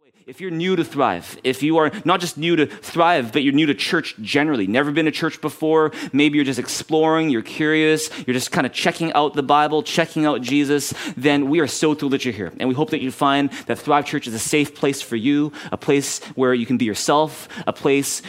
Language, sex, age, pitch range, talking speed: English, male, 30-49, 125-155 Hz, 240 wpm